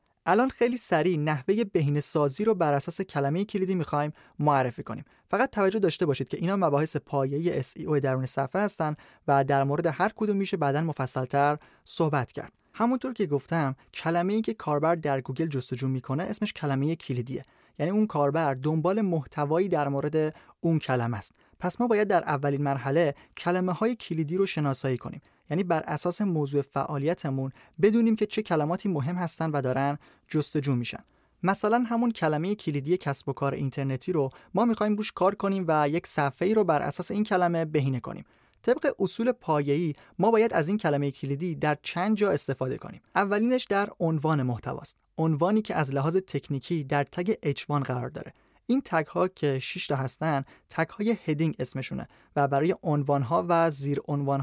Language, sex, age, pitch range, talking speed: Persian, male, 30-49, 140-190 Hz, 170 wpm